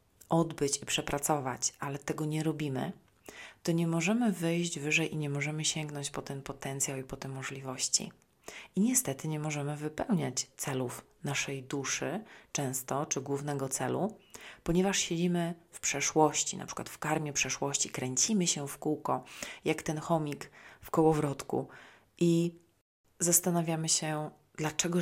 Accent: native